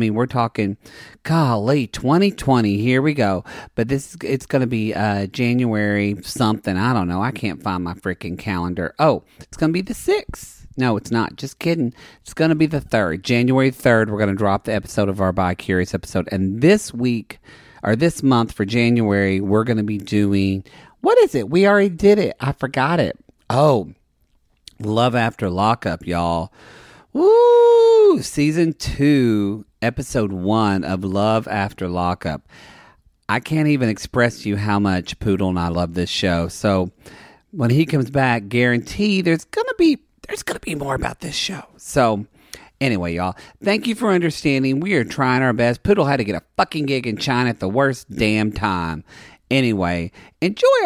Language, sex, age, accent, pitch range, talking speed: English, male, 40-59, American, 100-140 Hz, 180 wpm